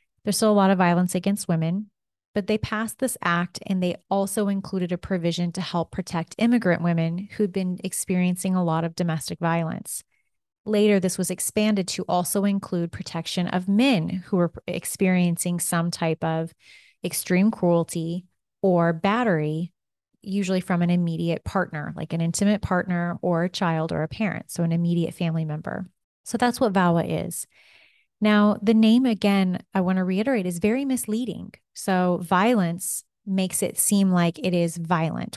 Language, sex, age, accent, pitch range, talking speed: English, female, 30-49, American, 175-205 Hz, 165 wpm